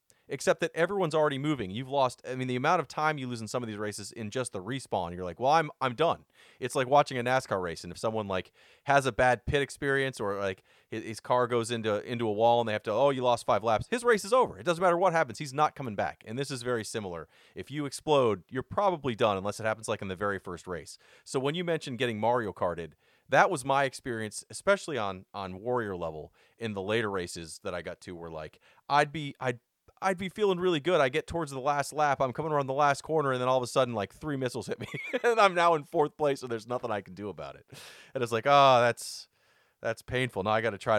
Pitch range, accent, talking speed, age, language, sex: 110-150 Hz, American, 265 wpm, 30-49, English, male